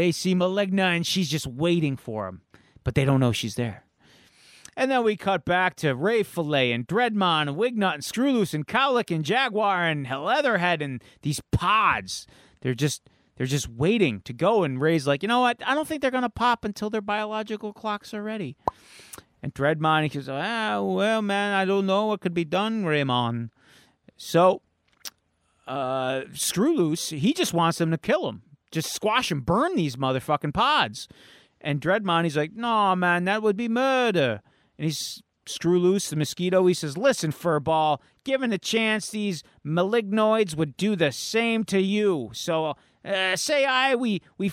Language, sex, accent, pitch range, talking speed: English, male, American, 145-215 Hz, 180 wpm